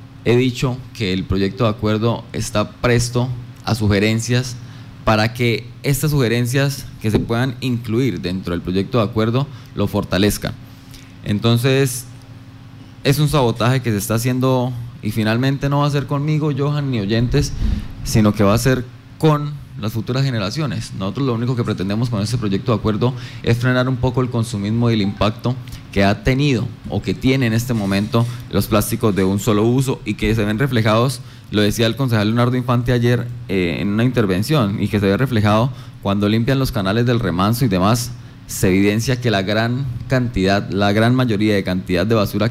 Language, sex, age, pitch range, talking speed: Spanish, male, 20-39, 105-125 Hz, 180 wpm